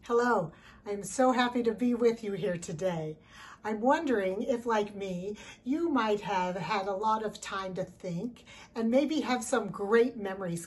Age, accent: 50-69, American